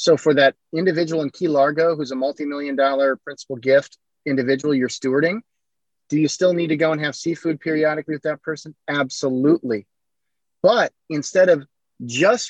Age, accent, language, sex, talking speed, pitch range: 30-49, American, English, male, 165 wpm, 135-165 Hz